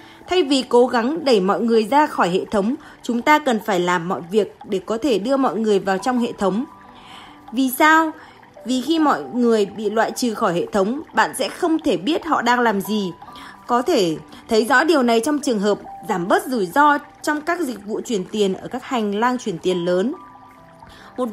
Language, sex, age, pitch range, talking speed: Vietnamese, female, 20-39, 215-290 Hz, 215 wpm